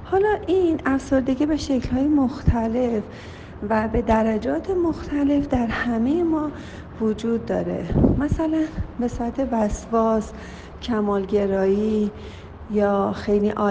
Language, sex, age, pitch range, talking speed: Persian, female, 40-59, 195-230 Hz, 95 wpm